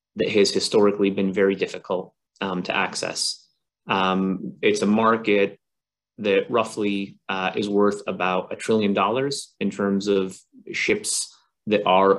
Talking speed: 140 wpm